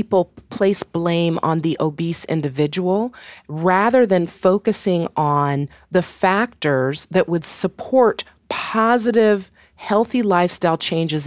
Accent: American